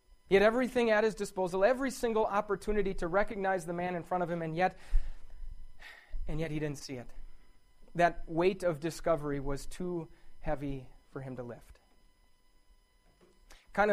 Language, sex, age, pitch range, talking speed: English, male, 30-49, 145-210 Hz, 160 wpm